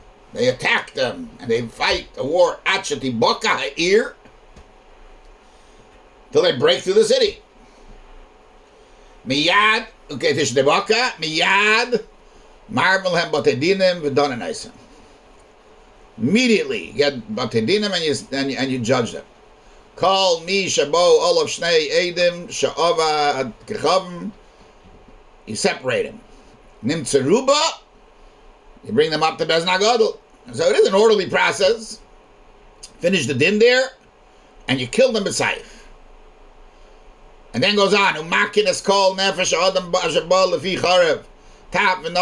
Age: 60-79